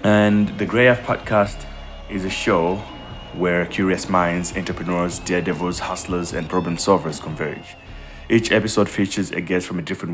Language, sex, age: English, male, 20-39